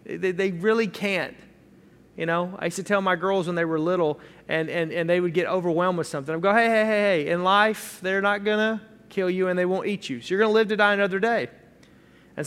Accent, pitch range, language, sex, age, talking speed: American, 190-240 Hz, English, male, 30-49, 260 wpm